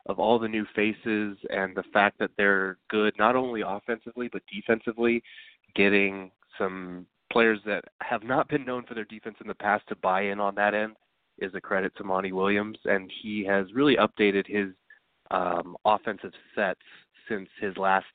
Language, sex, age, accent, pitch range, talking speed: English, male, 20-39, American, 95-115 Hz, 180 wpm